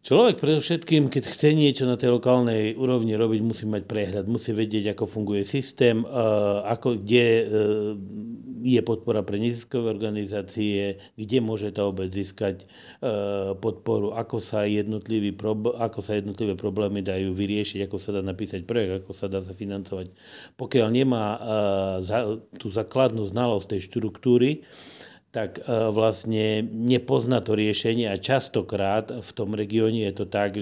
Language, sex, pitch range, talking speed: Slovak, male, 100-115 Hz, 130 wpm